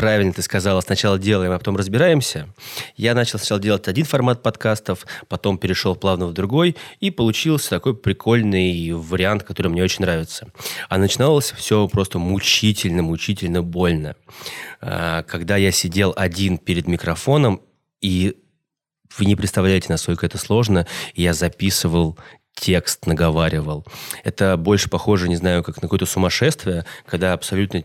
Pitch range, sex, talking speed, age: 90-105 Hz, male, 135 wpm, 20-39